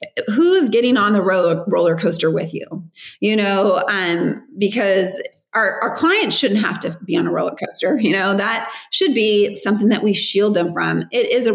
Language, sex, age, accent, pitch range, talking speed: English, female, 30-49, American, 185-235 Hz, 200 wpm